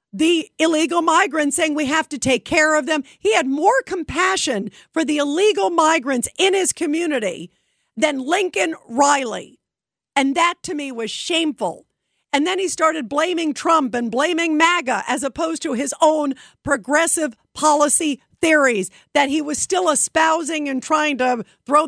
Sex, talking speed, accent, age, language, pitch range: female, 155 wpm, American, 50-69, English, 255-320 Hz